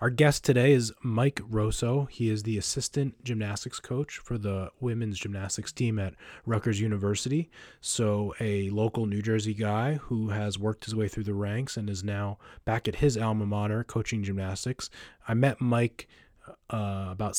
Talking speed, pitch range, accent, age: 170 wpm, 105-120 Hz, American, 20-39